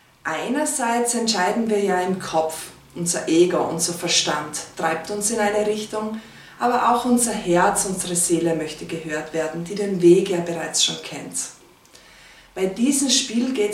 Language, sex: German, female